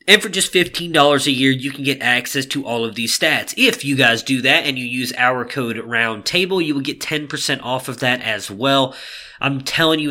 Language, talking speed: English, 225 wpm